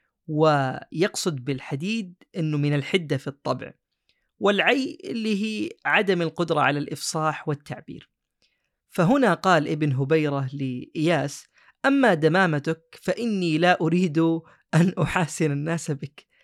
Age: 20-39